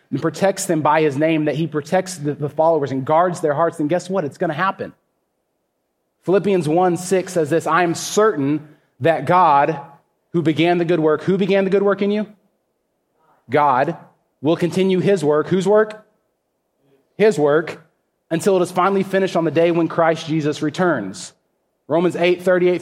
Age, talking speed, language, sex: 30-49, 180 wpm, English, male